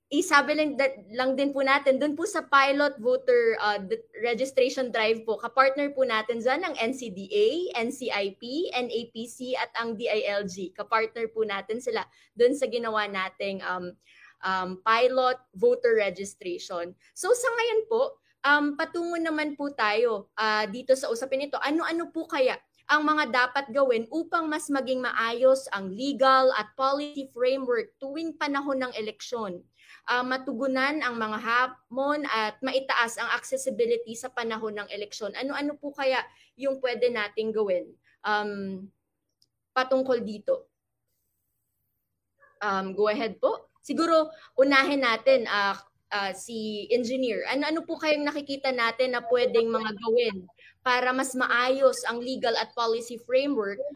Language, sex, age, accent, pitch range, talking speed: Filipino, female, 20-39, native, 220-280 Hz, 140 wpm